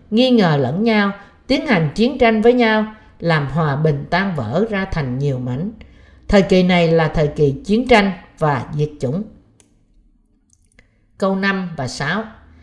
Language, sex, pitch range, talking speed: Vietnamese, female, 155-230 Hz, 160 wpm